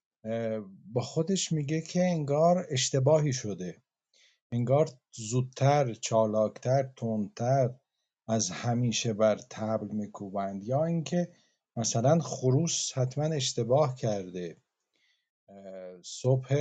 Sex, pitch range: male, 115-150 Hz